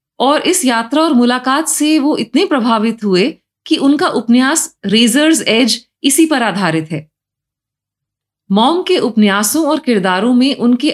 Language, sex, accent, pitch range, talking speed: Hindi, female, native, 175-280 Hz, 145 wpm